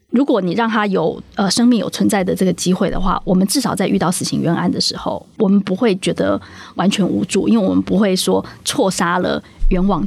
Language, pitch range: Chinese, 195-240 Hz